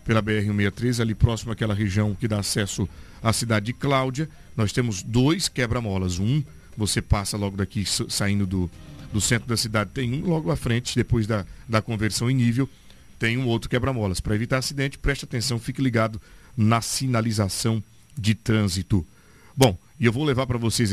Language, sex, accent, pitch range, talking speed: Portuguese, male, Brazilian, 105-145 Hz, 175 wpm